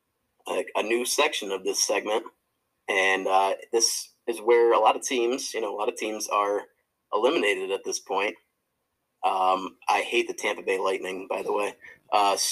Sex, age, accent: male, 30-49, American